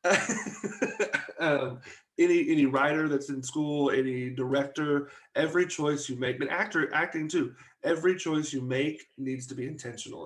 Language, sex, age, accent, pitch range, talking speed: English, male, 30-49, American, 130-155 Hz, 145 wpm